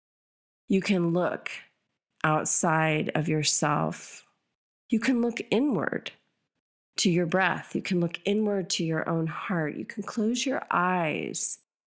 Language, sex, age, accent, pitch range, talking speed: English, female, 40-59, American, 160-205 Hz, 130 wpm